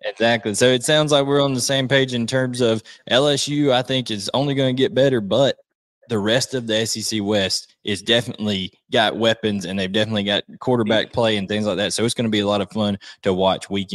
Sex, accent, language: male, American, English